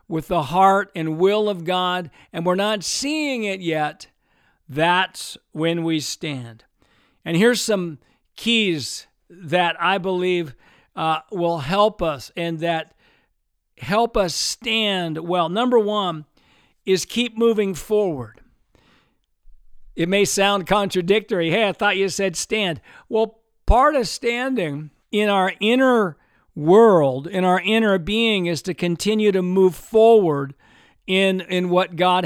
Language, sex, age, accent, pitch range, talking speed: English, male, 50-69, American, 170-210 Hz, 135 wpm